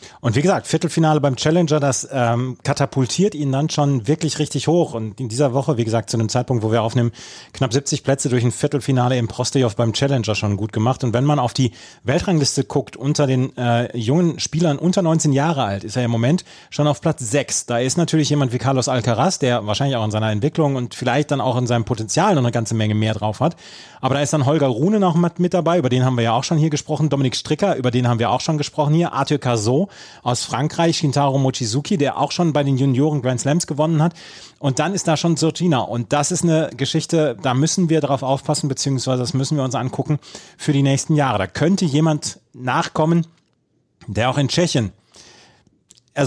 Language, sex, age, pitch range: German, male, 30-49, 120-150 Hz